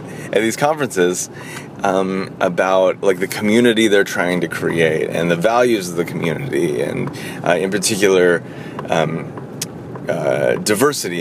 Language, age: English, 30-49